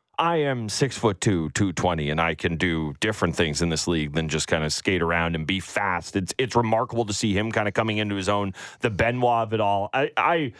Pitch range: 105-150 Hz